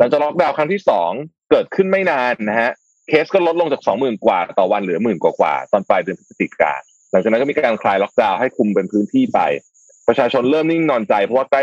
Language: Thai